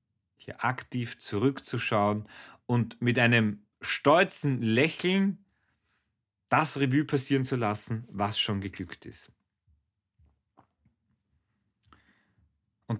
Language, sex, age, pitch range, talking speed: German, male, 40-59, 100-130 Hz, 85 wpm